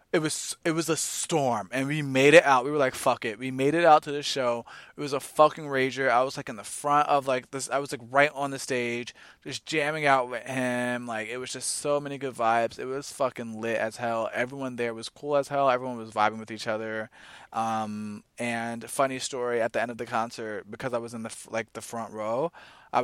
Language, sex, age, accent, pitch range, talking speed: English, male, 20-39, American, 115-145 Hz, 250 wpm